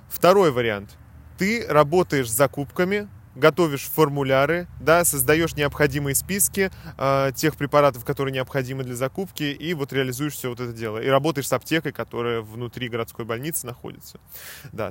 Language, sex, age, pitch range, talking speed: Russian, male, 20-39, 125-160 Hz, 145 wpm